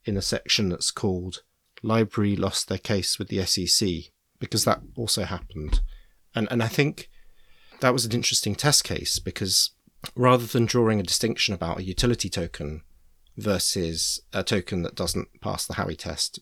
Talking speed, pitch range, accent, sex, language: 165 wpm, 90-125 Hz, British, male, English